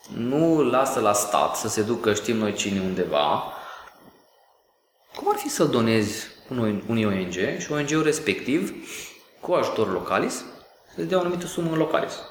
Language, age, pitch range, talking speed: Romanian, 20-39, 105-155 Hz, 150 wpm